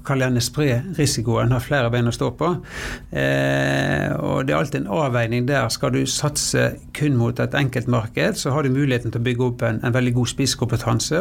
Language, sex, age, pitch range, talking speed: English, male, 60-79, 120-145 Hz, 205 wpm